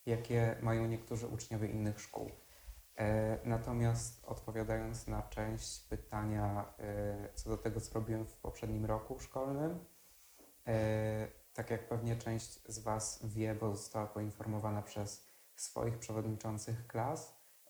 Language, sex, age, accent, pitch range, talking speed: Polish, male, 20-39, native, 105-115 Hz, 115 wpm